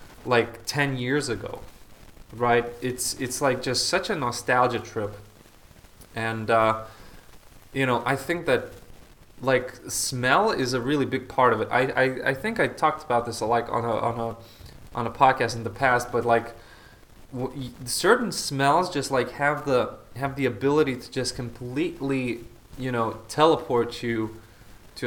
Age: 20-39